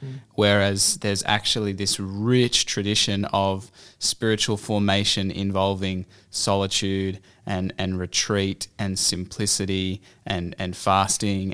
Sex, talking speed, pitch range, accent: male, 100 wpm, 95-110 Hz, Australian